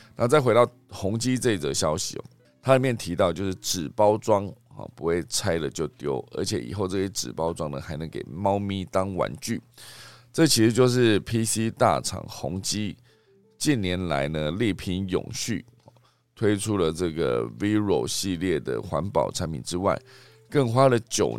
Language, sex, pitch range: Chinese, male, 85-120 Hz